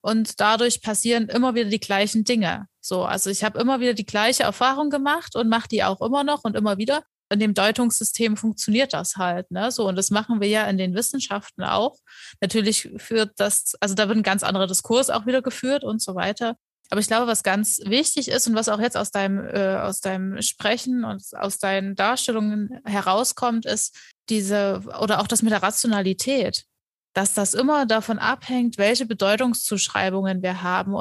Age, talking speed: 20-39, 190 wpm